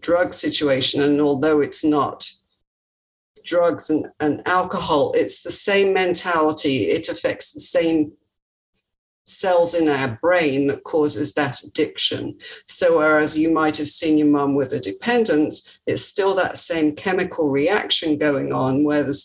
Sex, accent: female, British